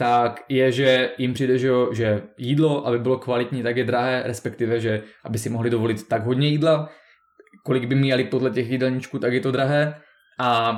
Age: 20-39